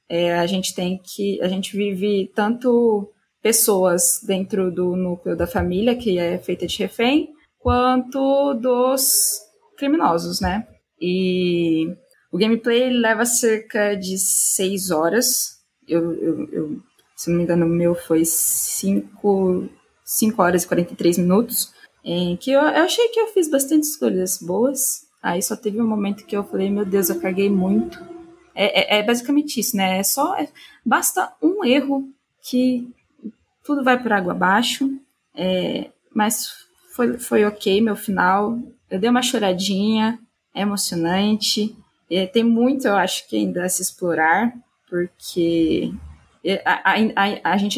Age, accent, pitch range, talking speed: 20-39, Brazilian, 185-245 Hz, 140 wpm